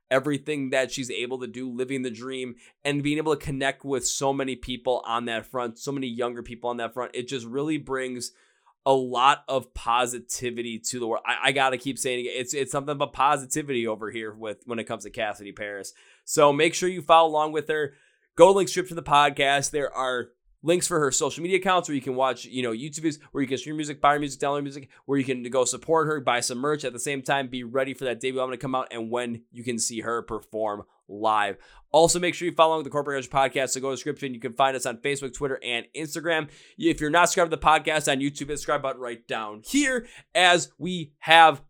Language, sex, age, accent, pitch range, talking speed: English, male, 20-39, American, 125-150 Hz, 240 wpm